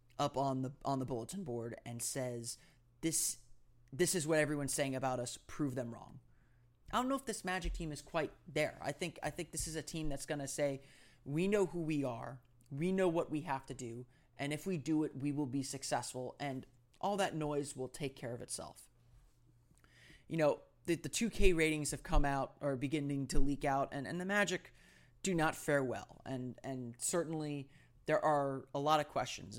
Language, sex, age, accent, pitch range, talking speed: English, male, 30-49, American, 125-155 Hz, 210 wpm